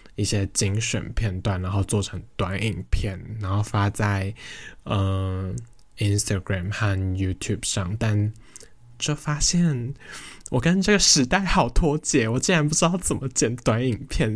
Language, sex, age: Chinese, male, 10-29